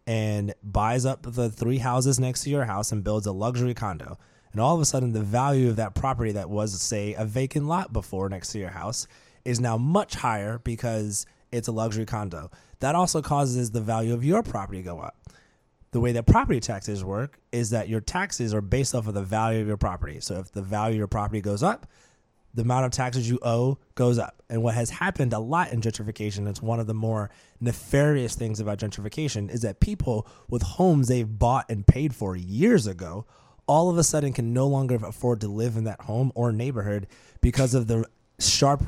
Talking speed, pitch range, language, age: 215 wpm, 105-125 Hz, English, 20-39